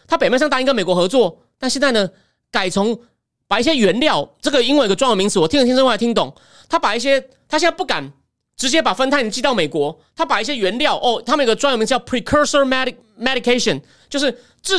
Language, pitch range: Chinese, 225-290 Hz